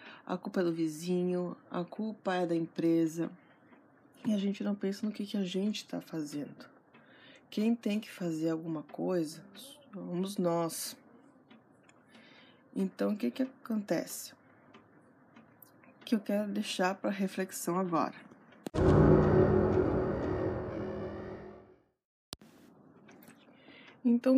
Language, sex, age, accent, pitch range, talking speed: Portuguese, female, 20-39, Brazilian, 185-260 Hz, 105 wpm